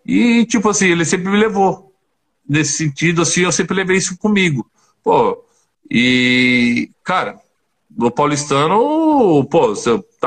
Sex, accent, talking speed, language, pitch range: male, Brazilian, 130 wpm, Portuguese, 125-190 Hz